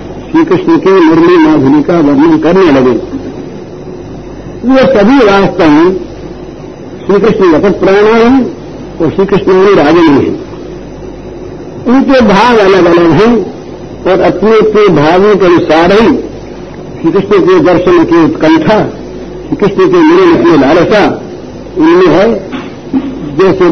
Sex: male